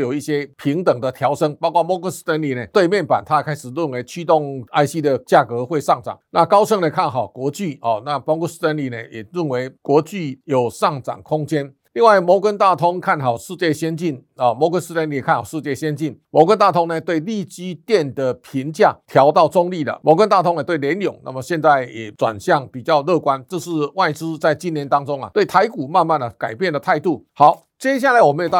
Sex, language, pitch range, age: male, Chinese, 145-180 Hz, 50-69